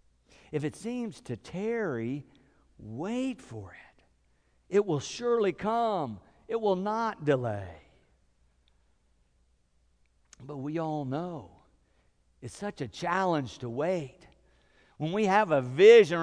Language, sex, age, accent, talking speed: English, male, 50-69, American, 115 wpm